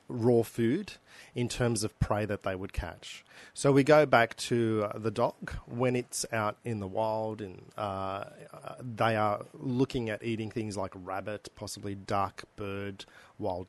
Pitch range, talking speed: 100-120 Hz, 165 wpm